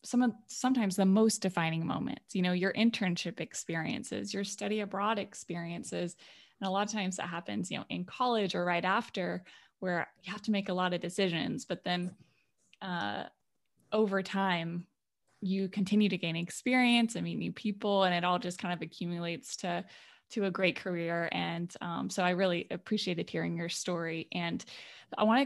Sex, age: female, 20-39